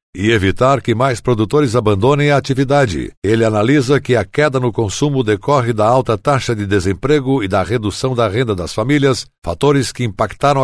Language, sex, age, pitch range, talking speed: Portuguese, male, 60-79, 115-140 Hz, 175 wpm